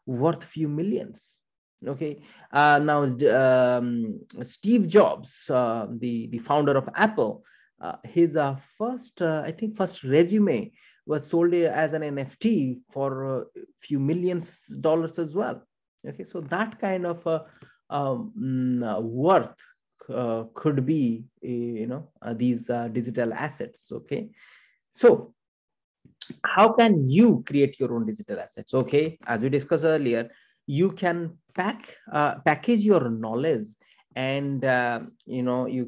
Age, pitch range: 20-39, 120-160 Hz